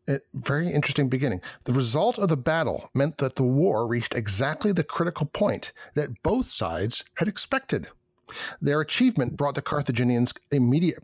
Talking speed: 150 wpm